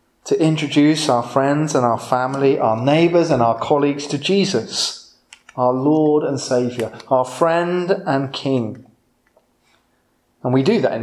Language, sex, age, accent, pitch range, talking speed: English, male, 30-49, British, 125-185 Hz, 145 wpm